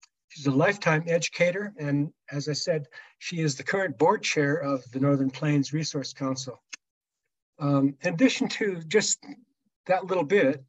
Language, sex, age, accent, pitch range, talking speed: English, male, 60-79, American, 135-165 Hz, 155 wpm